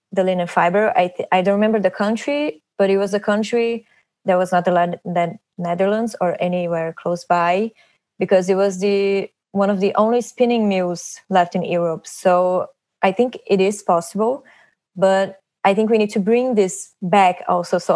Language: English